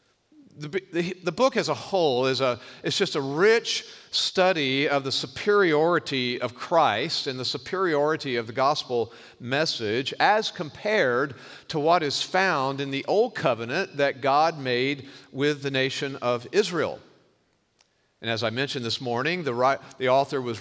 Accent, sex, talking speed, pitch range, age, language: American, male, 155 wpm, 120-170 Hz, 50-69, English